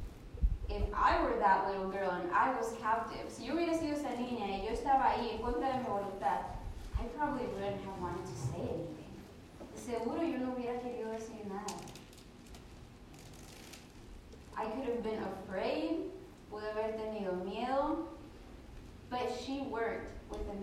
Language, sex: English, female